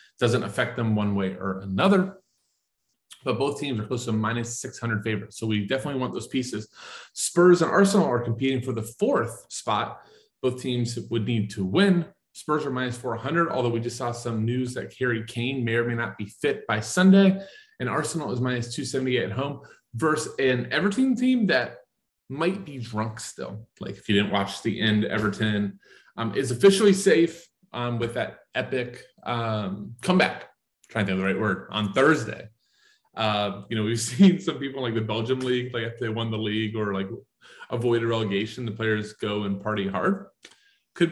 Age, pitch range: 30-49, 110-140 Hz